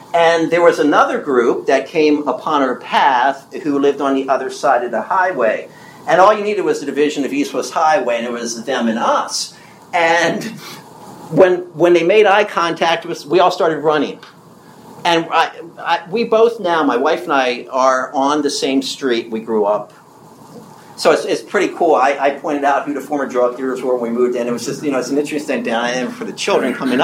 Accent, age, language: American, 50-69, English